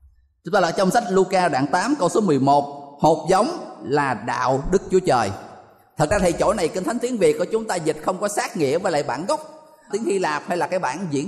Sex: male